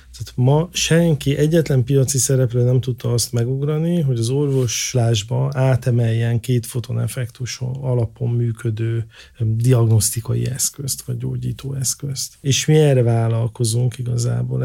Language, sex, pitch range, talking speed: Hungarian, male, 115-135 Hz, 110 wpm